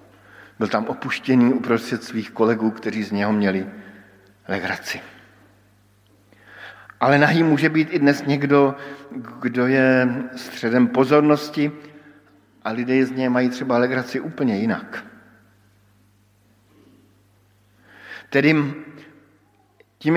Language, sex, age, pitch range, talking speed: Slovak, male, 50-69, 105-140 Hz, 100 wpm